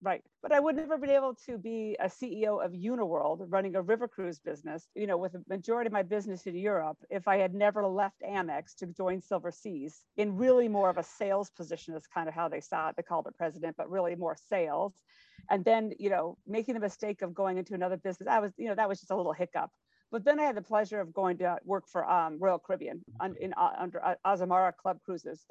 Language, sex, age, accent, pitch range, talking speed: English, female, 50-69, American, 175-205 Hz, 245 wpm